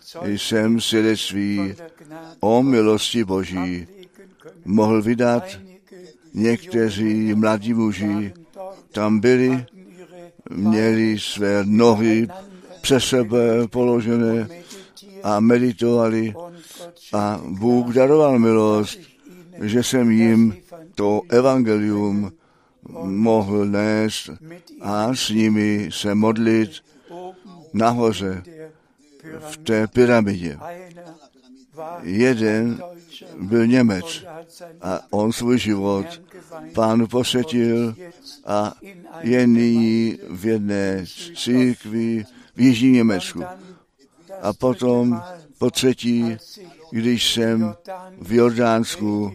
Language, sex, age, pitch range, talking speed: Czech, male, 60-79, 110-160 Hz, 80 wpm